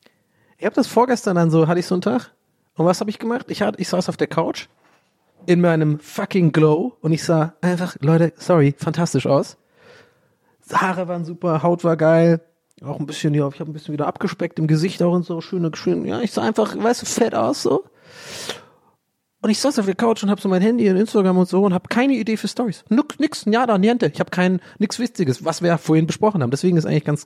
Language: German